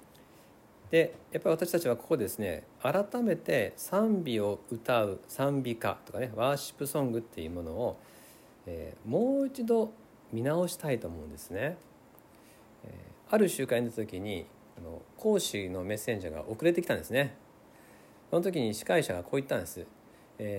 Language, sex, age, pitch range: Japanese, male, 50-69, 100-165 Hz